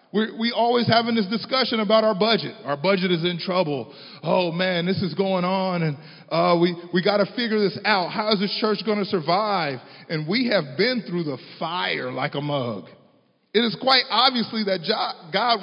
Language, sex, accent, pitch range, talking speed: English, male, American, 135-220 Hz, 190 wpm